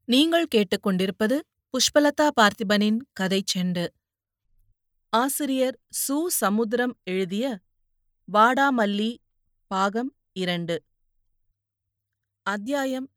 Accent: native